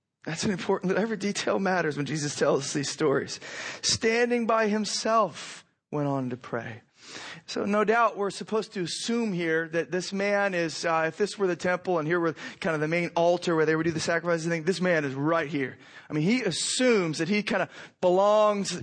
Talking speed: 210 wpm